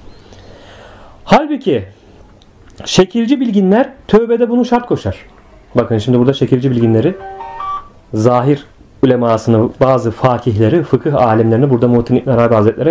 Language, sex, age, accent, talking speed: Turkish, male, 40-59, native, 105 wpm